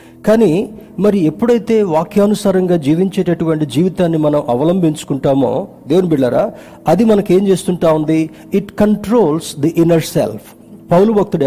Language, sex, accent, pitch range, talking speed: Telugu, male, native, 145-200 Hz, 110 wpm